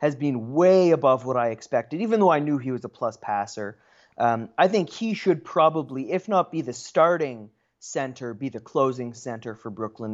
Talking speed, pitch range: 200 wpm, 115-160 Hz